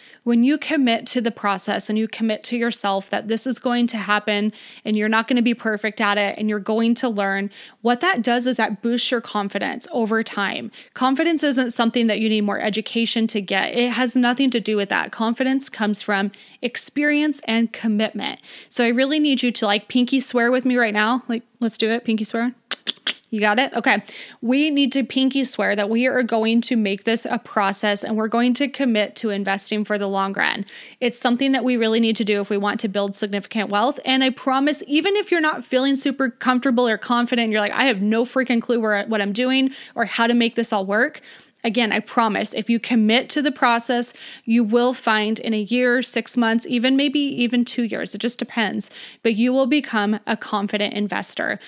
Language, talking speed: English, 220 wpm